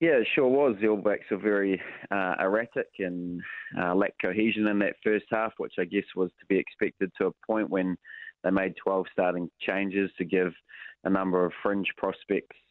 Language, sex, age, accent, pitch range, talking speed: English, male, 20-39, Australian, 90-105 Hz, 195 wpm